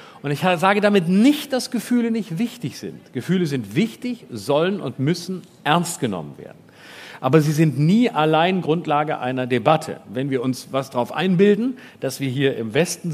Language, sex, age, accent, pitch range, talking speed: German, male, 40-59, German, 135-190 Hz, 175 wpm